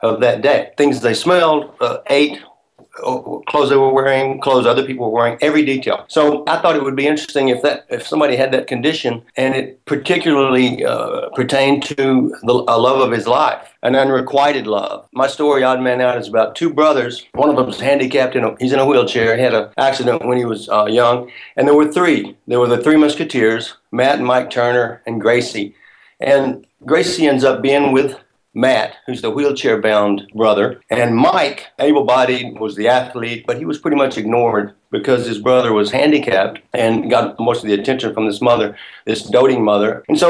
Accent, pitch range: American, 120-145 Hz